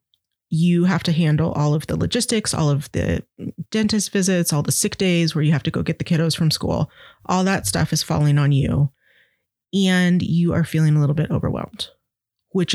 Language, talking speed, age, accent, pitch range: English, 200 wpm, 20-39, American, 150-170 Hz